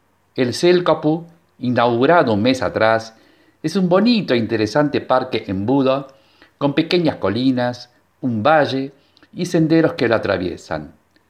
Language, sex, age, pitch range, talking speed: Spanish, male, 50-69, 110-160 Hz, 125 wpm